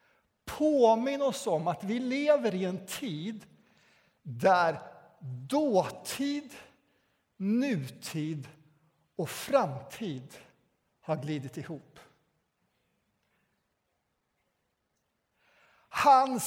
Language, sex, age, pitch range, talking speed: Swedish, male, 60-79, 165-250 Hz, 65 wpm